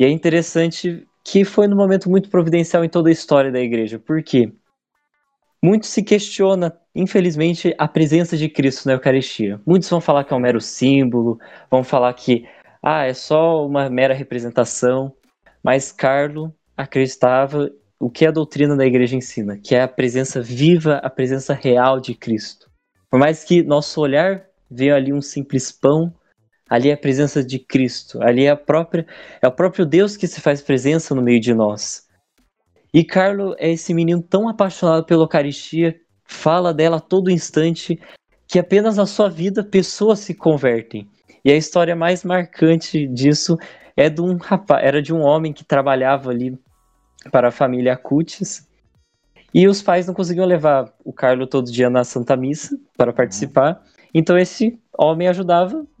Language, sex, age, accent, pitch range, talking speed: Portuguese, male, 20-39, Brazilian, 130-175 Hz, 170 wpm